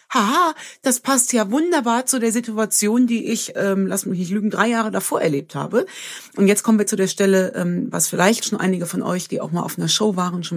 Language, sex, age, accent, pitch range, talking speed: German, female, 30-49, German, 170-220 Hz, 225 wpm